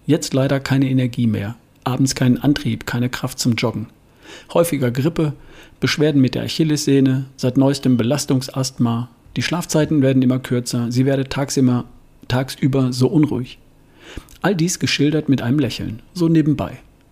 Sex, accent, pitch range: male, German, 125-145 Hz